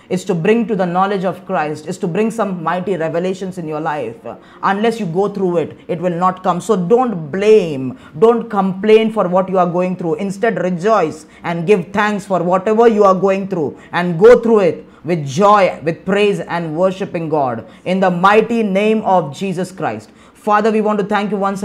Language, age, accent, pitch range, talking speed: English, 20-39, Indian, 180-200 Hz, 200 wpm